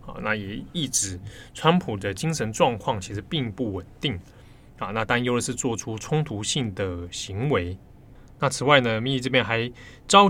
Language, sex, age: Chinese, male, 20-39